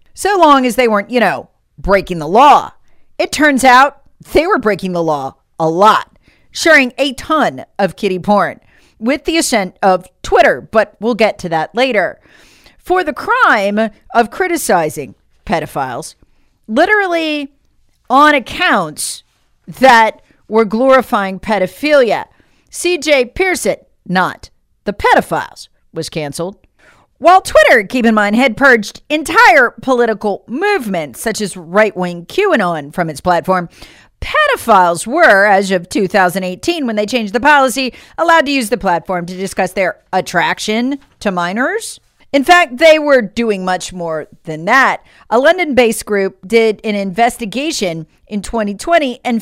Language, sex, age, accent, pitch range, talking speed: English, female, 50-69, American, 185-270 Hz, 135 wpm